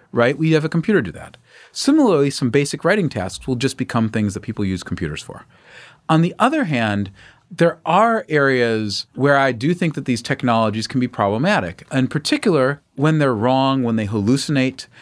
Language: English